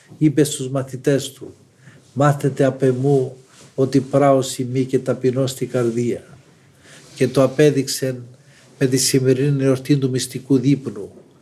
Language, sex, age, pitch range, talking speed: Greek, male, 50-69, 130-140 Hz, 120 wpm